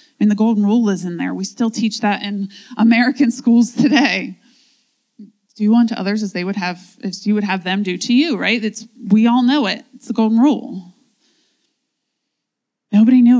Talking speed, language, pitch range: 195 wpm, English, 205-255 Hz